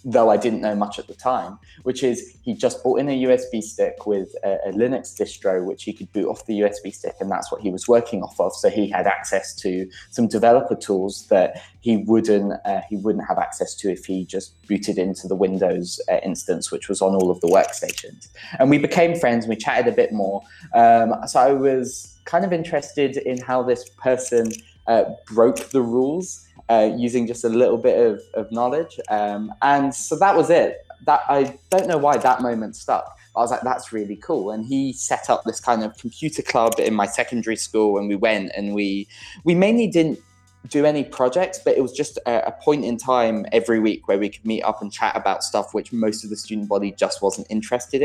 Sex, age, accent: male, 20-39, British